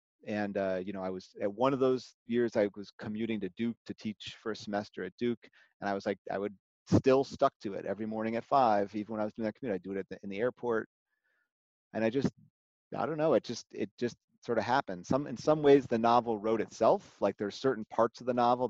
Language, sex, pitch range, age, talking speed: English, male, 100-115 Hz, 30-49, 255 wpm